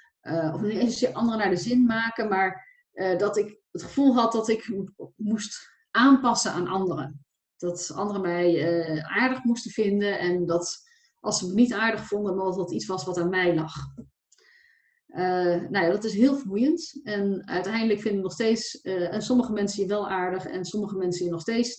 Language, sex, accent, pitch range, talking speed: Dutch, female, Dutch, 175-230 Hz, 180 wpm